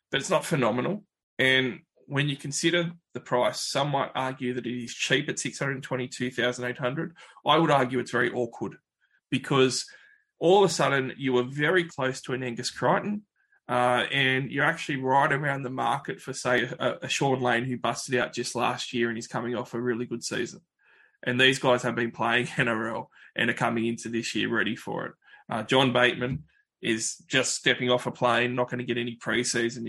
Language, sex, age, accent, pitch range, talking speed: English, male, 20-39, Australian, 125-150 Hz, 195 wpm